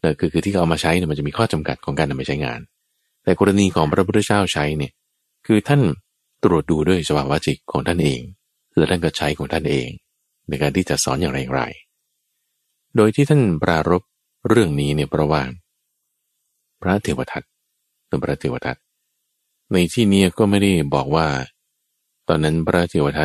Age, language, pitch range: 30-49, Thai, 75-95 Hz